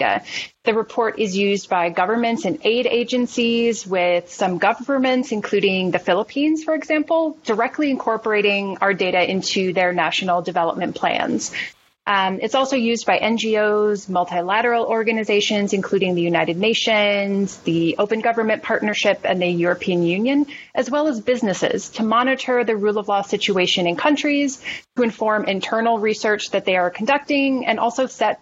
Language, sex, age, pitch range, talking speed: English, female, 30-49, 195-245 Hz, 150 wpm